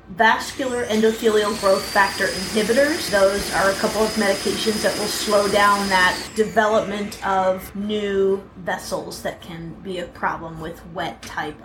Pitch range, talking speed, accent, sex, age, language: 195-245 Hz, 145 wpm, American, female, 30-49, English